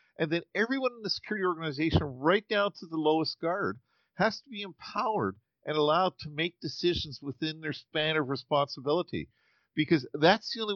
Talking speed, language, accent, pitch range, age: 175 wpm, English, American, 140-190 Hz, 50-69